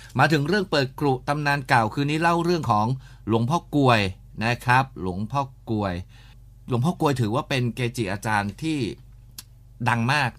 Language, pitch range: Thai, 105-130 Hz